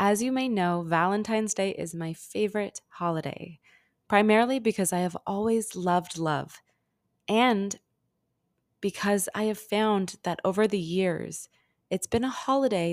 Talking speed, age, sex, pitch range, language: 140 wpm, 20-39, female, 170-210 Hz, English